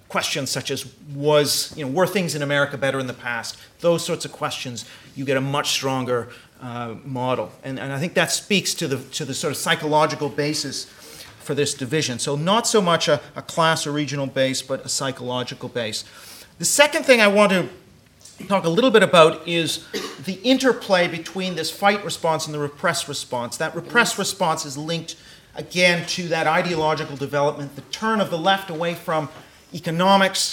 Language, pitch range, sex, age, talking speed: English, 140-185 Hz, male, 40-59, 190 wpm